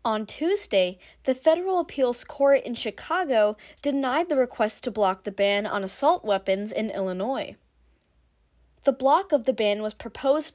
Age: 20-39